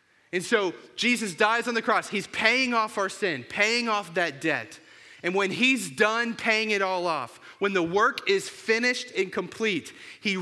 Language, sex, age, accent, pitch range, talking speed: English, male, 30-49, American, 145-215 Hz, 185 wpm